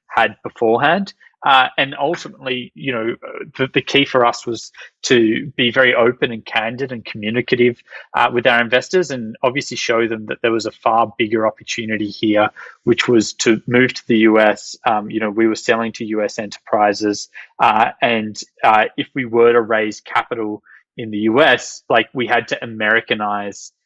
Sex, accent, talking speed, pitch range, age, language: male, Australian, 175 wpm, 110-130 Hz, 20-39, English